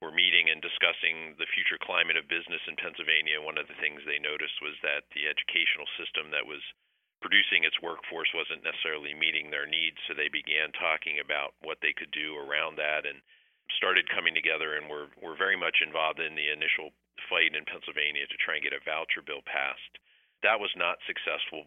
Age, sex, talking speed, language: 40-59, male, 195 wpm, English